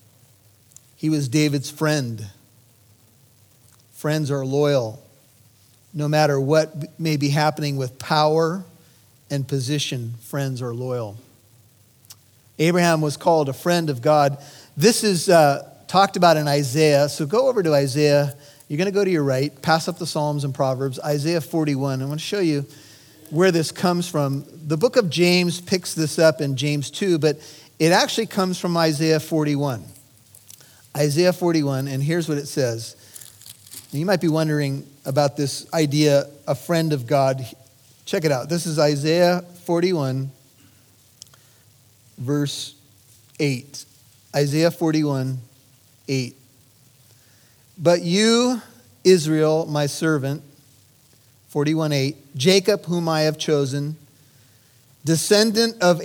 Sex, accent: male, American